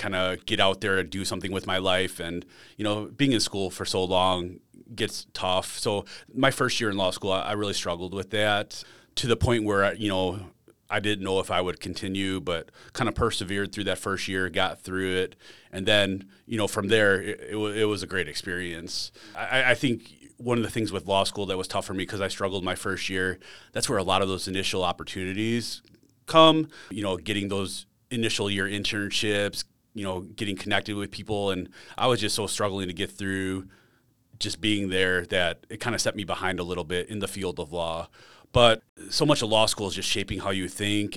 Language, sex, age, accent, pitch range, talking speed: English, male, 30-49, American, 95-105 Hz, 220 wpm